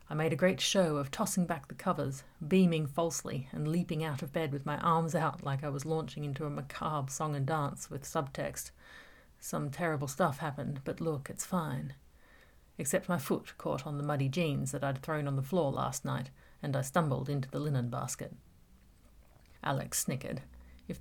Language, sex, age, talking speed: English, female, 40-59, 190 wpm